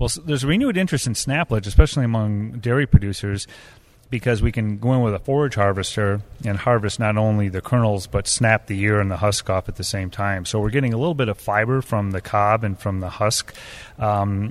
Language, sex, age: English, male, 30-49